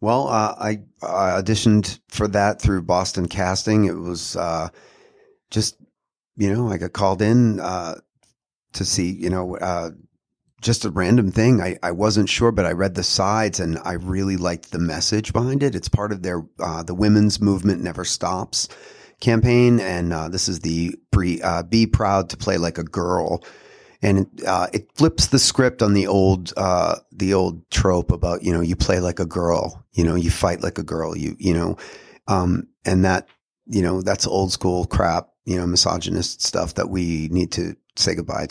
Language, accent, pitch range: English, American, 90-110 Hz